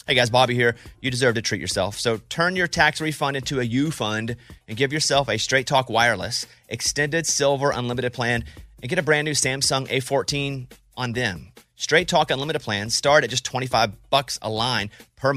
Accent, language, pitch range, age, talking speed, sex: American, English, 120-165 Hz, 30-49, 190 wpm, male